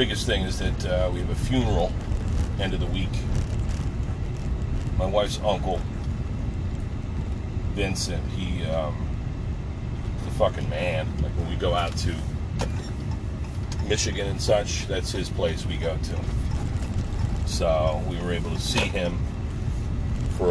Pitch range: 90-105 Hz